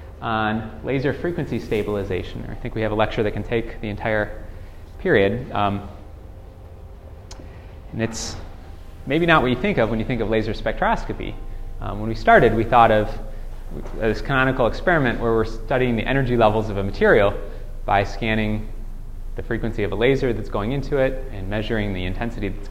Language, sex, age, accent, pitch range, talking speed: English, male, 30-49, American, 100-125 Hz, 175 wpm